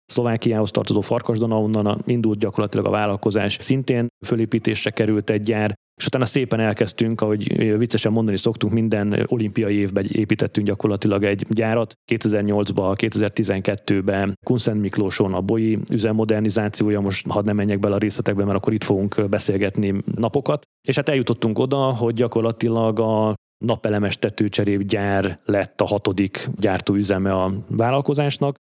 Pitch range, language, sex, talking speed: 100-115 Hz, Hungarian, male, 130 wpm